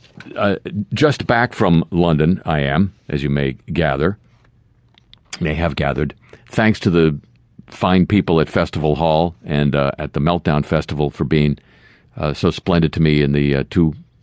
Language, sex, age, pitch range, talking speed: English, male, 50-69, 75-115 Hz, 160 wpm